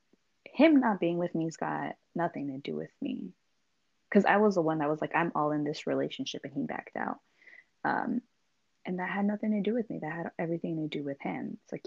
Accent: American